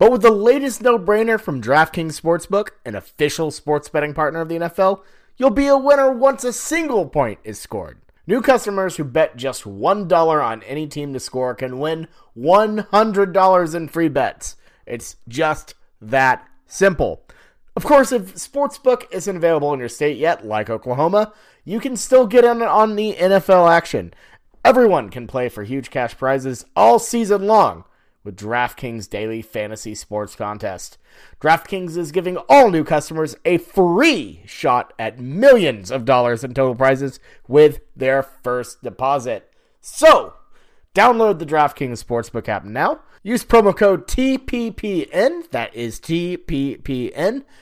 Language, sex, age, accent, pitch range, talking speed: English, male, 30-49, American, 130-210 Hz, 150 wpm